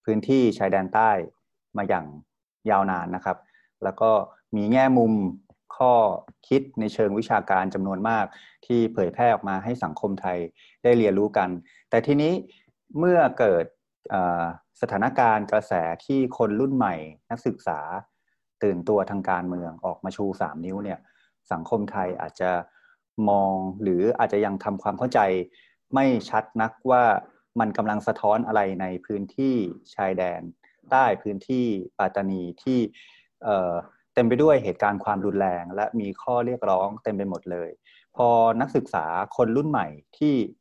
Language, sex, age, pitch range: Thai, male, 30-49, 90-115 Hz